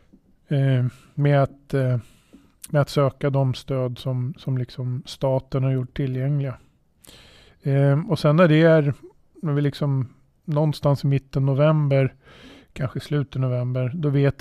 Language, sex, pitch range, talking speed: Swedish, male, 130-145 Hz, 135 wpm